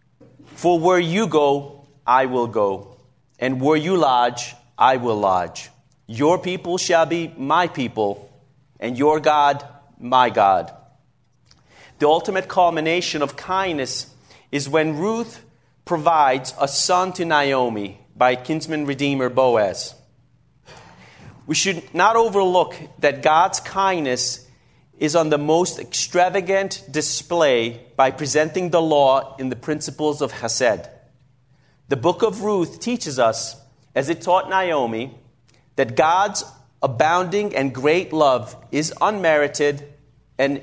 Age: 40-59